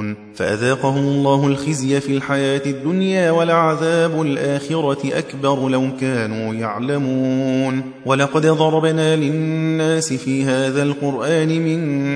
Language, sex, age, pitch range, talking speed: Persian, male, 30-49, 125-155 Hz, 95 wpm